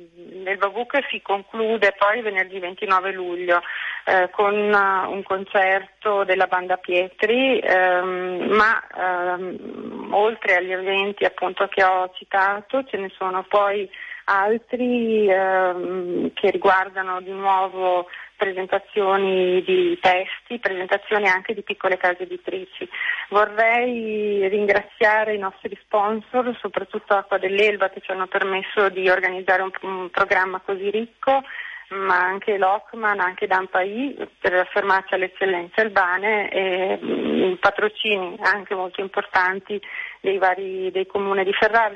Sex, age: female, 30-49